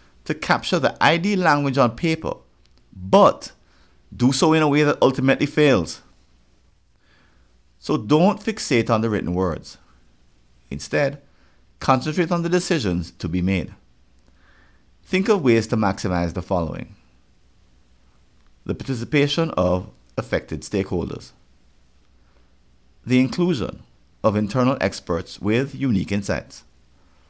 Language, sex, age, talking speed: English, male, 50-69, 110 wpm